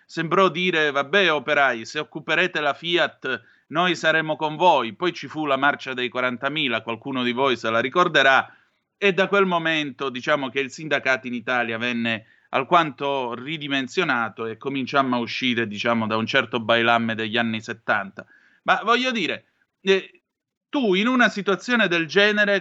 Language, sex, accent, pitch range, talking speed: Italian, male, native, 120-175 Hz, 160 wpm